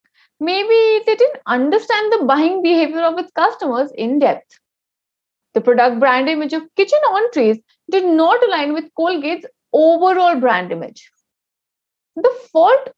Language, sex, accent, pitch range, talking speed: English, female, Indian, 265-380 Hz, 135 wpm